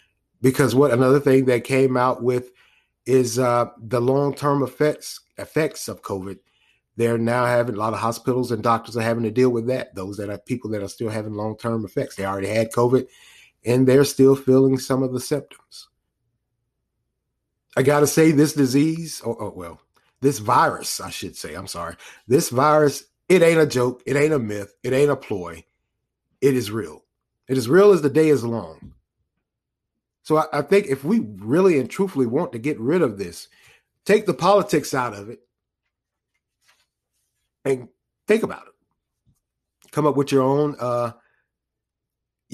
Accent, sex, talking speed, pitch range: American, male, 180 wpm, 115-145 Hz